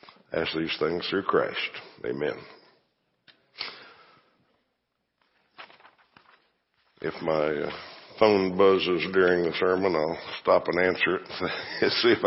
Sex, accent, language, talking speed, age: male, American, English, 100 wpm, 60-79